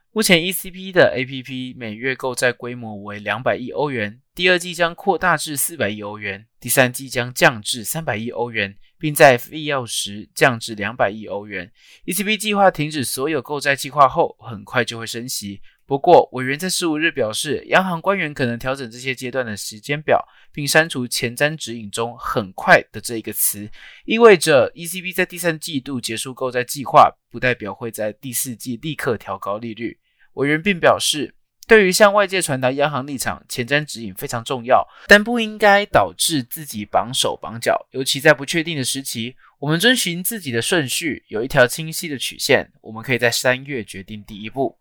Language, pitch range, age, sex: Chinese, 115-165 Hz, 20-39, male